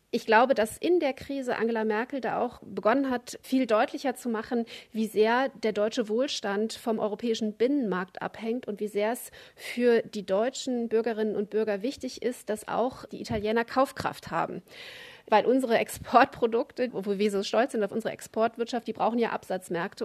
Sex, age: female, 30-49